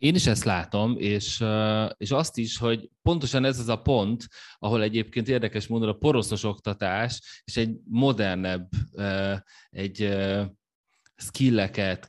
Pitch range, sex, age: 95-120 Hz, male, 30-49